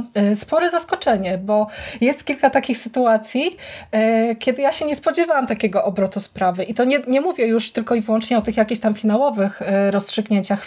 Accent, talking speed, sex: native, 170 wpm, female